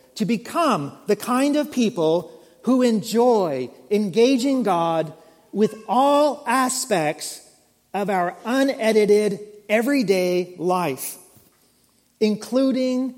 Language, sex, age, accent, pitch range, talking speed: English, male, 40-59, American, 165-225 Hz, 85 wpm